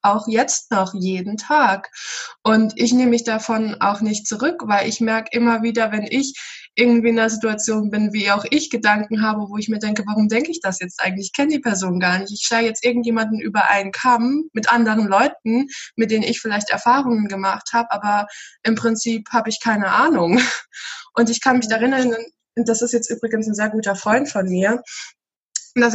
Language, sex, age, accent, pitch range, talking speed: German, female, 20-39, German, 205-235 Hz, 200 wpm